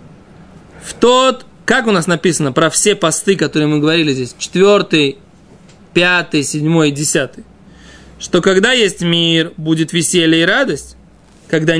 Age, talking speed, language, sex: 20-39, 135 wpm, Russian, male